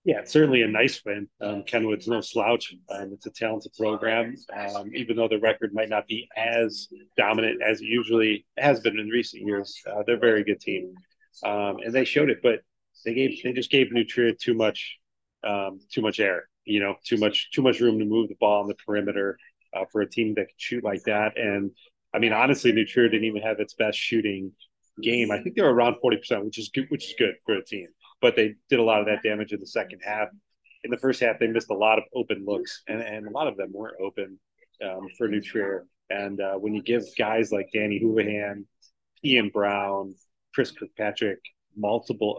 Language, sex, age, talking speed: English, male, 30-49, 220 wpm